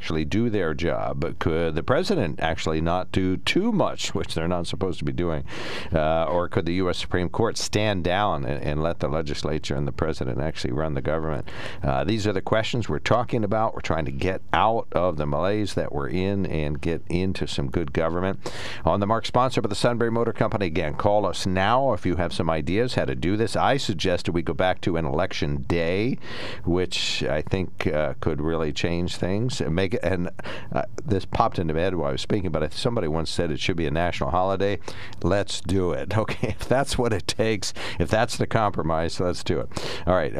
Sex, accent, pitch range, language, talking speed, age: male, American, 80-105 Hz, English, 220 wpm, 50-69